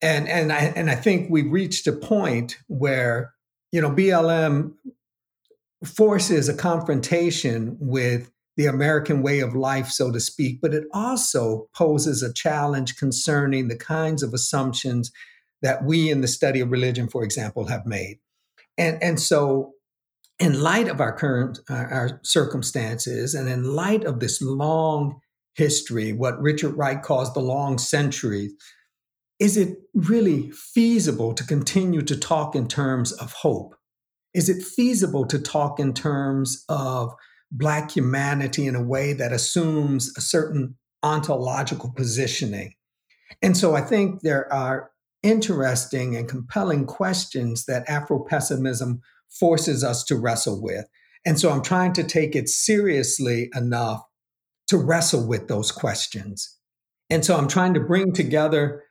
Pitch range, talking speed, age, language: 125-160 Hz, 145 wpm, 50-69, English